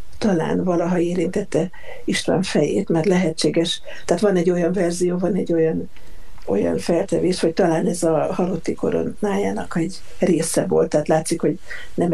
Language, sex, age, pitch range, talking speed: Hungarian, female, 60-79, 165-190 Hz, 150 wpm